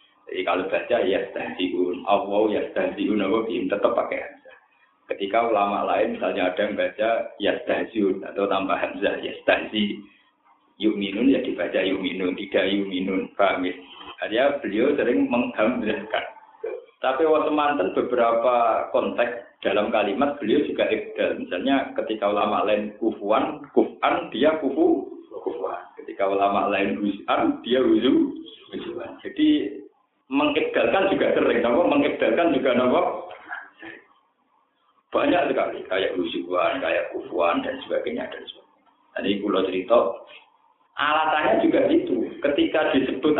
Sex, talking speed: male, 130 wpm